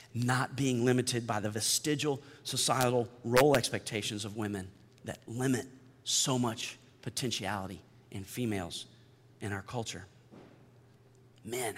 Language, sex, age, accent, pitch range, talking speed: English, male, 40-59, American, 115-140 Hz, 110 wpm